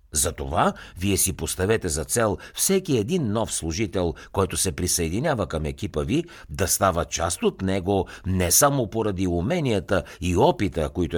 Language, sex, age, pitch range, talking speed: Bulgarian, male, 60-79, 85-135 Hz, 150 wpm